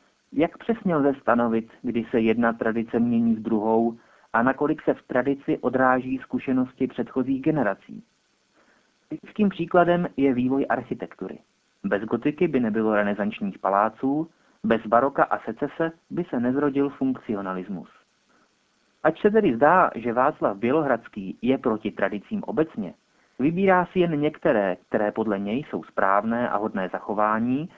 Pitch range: 115-150 Hz